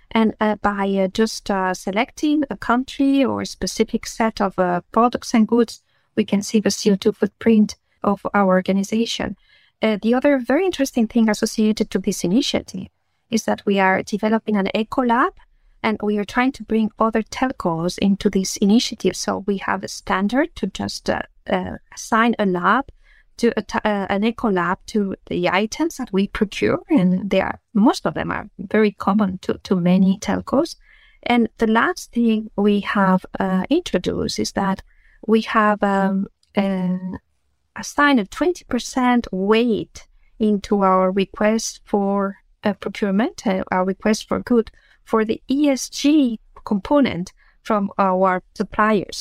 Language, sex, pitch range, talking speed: English, female, 195-235 Hz, 160 wpm